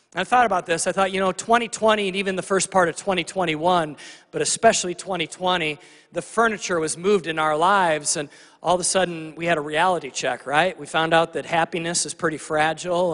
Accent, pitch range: American, 155-190 Hz